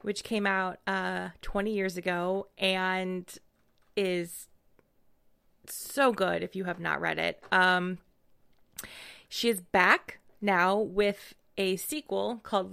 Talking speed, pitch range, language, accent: 125 wpm, 180-210 Hz, English, American